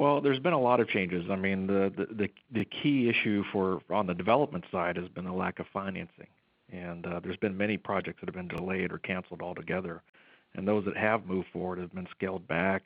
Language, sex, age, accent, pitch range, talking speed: English, male, 50-69, American, 95-110 Hz, 225 wpm